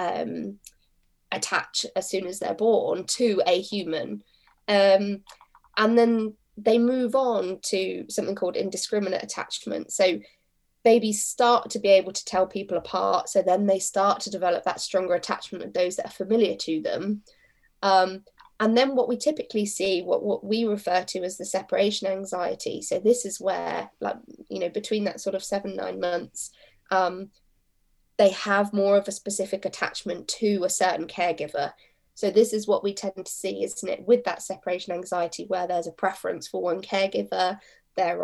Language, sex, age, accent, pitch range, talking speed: English, female, 20-39, British, 180-210 Hz, 175 wpm